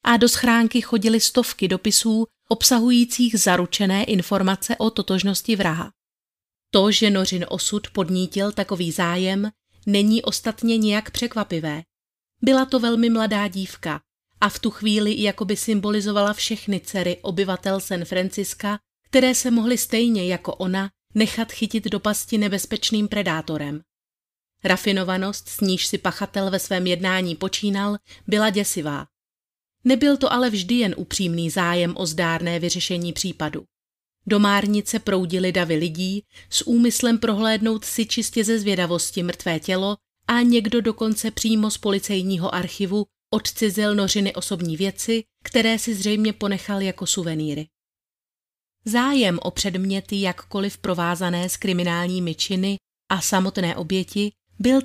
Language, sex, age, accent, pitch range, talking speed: Czech, female, 30-49, native, 185-225 Hz, 125 wpm